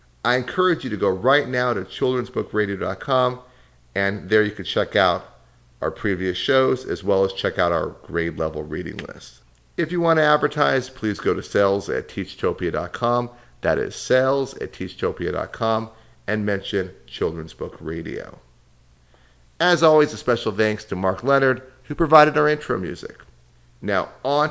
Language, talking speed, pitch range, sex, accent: English, 150 wpm, 85-135 Hz, male, American